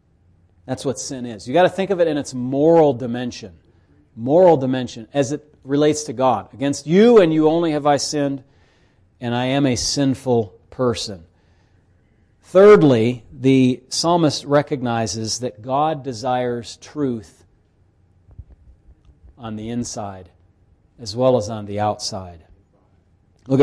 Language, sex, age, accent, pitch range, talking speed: English, male, 40-59, American, 100-145 Hz, 135 wpm